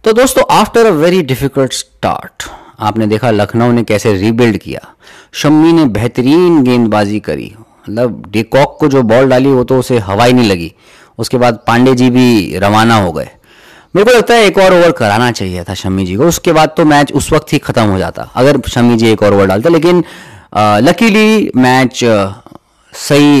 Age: 30-49